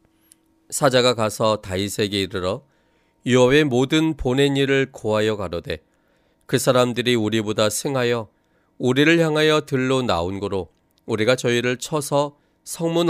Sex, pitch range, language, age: male, 105-145 Hz, Korean, 40-59